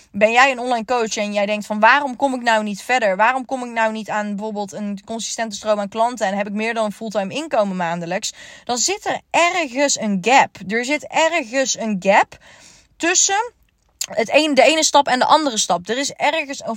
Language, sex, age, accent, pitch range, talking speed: Dutch, female, 20-39, Dutch, 210-275 Hz, 210 wpm